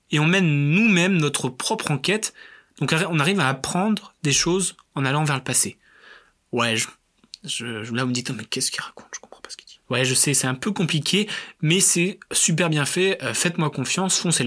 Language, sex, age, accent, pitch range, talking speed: French, male, 20-39, French, 140-190 Hz, 220 wpm